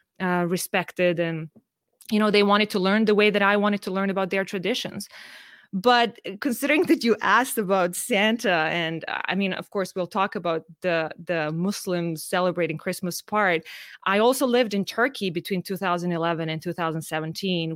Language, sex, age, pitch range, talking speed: English, female, 20-39, 175-210 Hz, 165 wpm